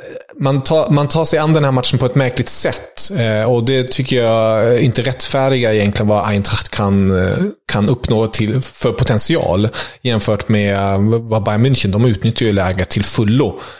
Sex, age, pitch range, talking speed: male, 30-49, 105-120 Hz, 165 wpm